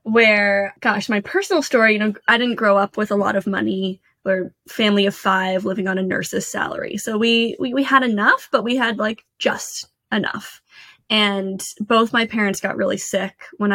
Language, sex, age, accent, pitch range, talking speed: English, female, 10-29, American, 195-225 Hz, 195 wpm